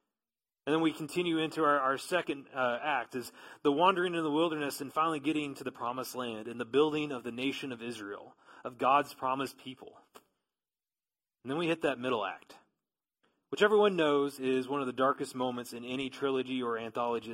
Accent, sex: American, male